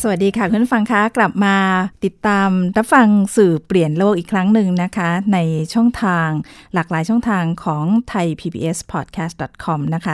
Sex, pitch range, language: female, 165-205 Hz, Thai